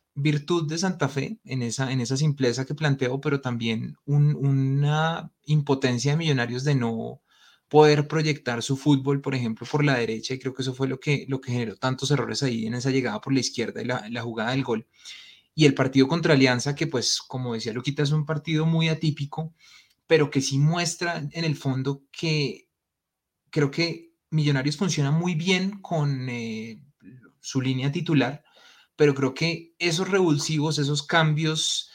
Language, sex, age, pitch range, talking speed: Spanish, male, 20-39, 130-155 Hz, 180 wpm